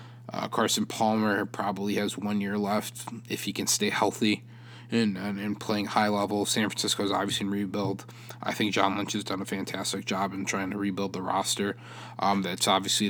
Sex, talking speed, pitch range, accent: male, 195 wpm, 100-120 Hz, American